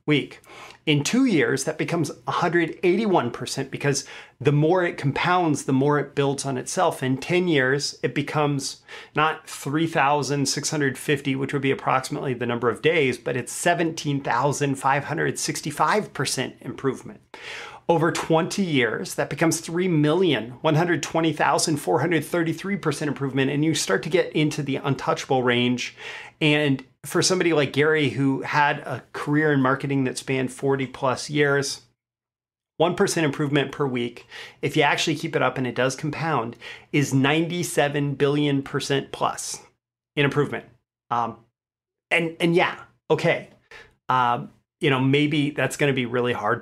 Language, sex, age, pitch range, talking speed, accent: English, male, 40-59, 130-160 Hz, 135 wpm, American